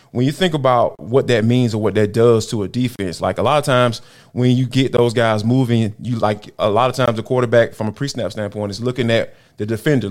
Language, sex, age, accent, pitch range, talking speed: English, male, 20-39, American, 110-135 Hz, 255 wpm